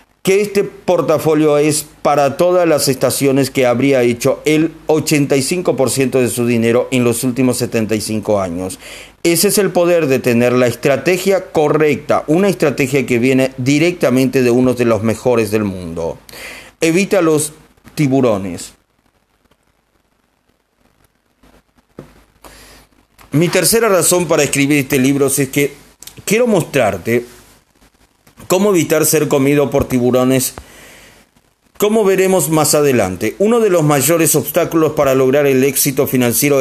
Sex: male